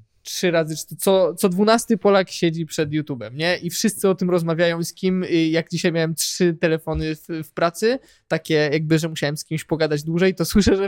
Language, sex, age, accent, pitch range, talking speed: Polish, male, 20-39, native, 160-185 Hz, 205 wpm